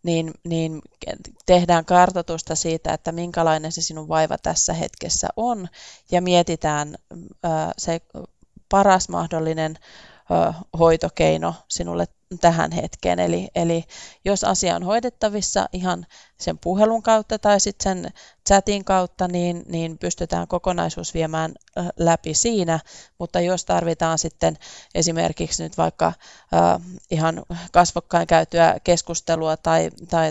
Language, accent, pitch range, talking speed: Finnish, native, 160-180 Hz, 120 wpm